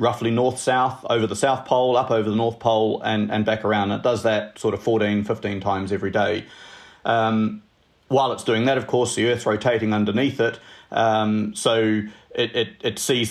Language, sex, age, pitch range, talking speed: English, male, 40-59, 105-120 Hz, 200 wpm